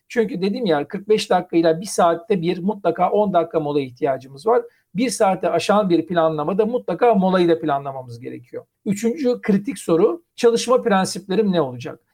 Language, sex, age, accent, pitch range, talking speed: Turkish, male, 50-69, native, 165-215 Hz, 155 wpm